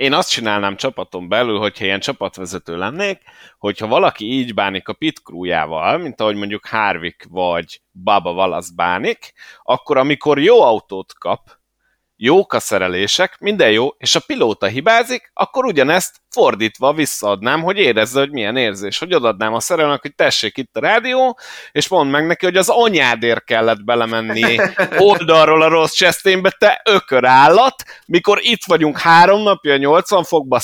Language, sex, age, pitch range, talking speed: Hungarian, male, 30-49, 115-175 Hz, 155 wpm